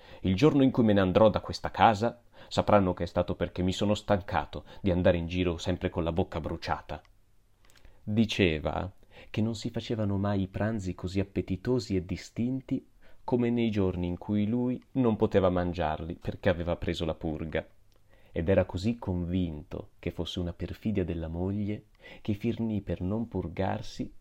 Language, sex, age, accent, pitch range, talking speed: Italian, male, 30-49, native, 85-110 Hz, 170 wpm